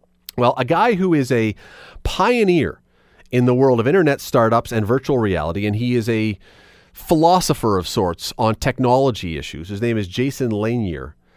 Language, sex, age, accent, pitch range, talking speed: English, male, 30-49, American, 100-150 Hz, 165 wpm